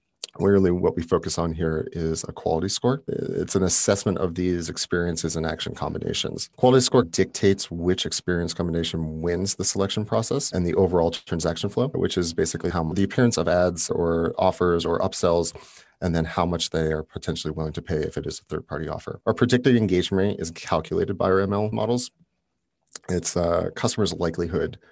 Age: 30-49